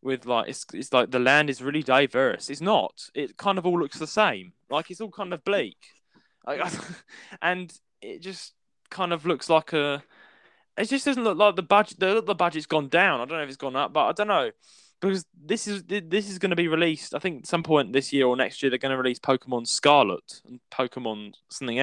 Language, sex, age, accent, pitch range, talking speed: English, male, 10-29, British, 125-185 Hz, 240 wpm